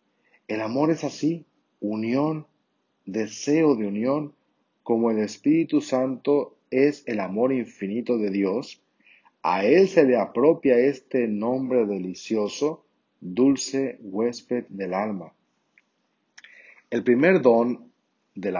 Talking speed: 110 wpm